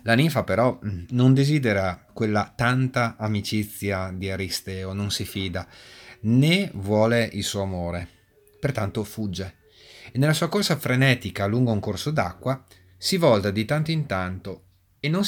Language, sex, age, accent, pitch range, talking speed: Italian, male, 30-49, native, 100-130 Hz, 145 wpm